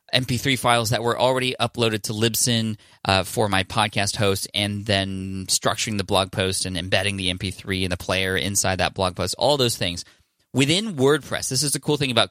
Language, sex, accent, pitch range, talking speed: English, male, American, 100-125 Hz, 200 wpm